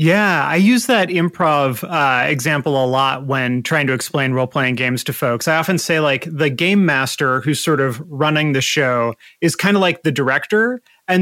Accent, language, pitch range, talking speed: American, English, 140-175 Hz, 200 wpm